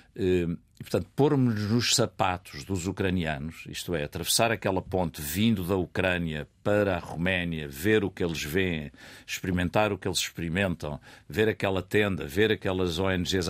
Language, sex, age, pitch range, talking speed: Portuguese, male, 50-69, 85-115 Hz, 150 wpm